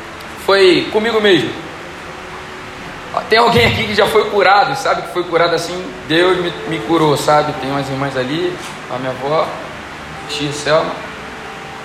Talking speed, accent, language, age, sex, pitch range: 140 wpm, Brazilian, Portuguese, 20-39, male, 145-220 Hz